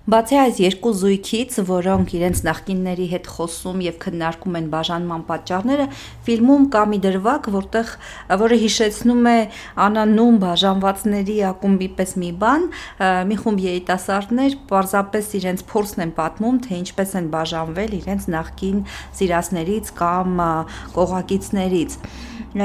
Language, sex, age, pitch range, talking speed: English, female, 40-59, 180-220 Hz, 80 wpm